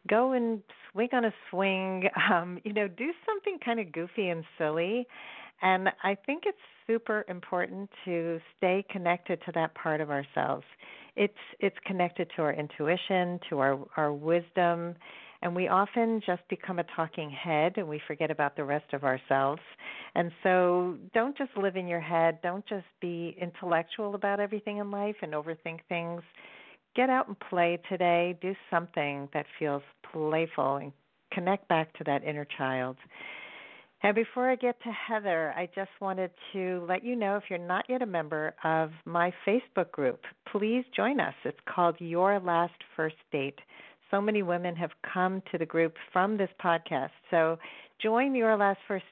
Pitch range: 165-200 Hz